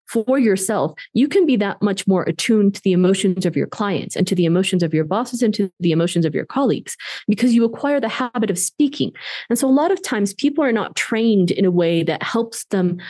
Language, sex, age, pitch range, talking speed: English, female, 30-49, 190-245 Hz, 240 wpm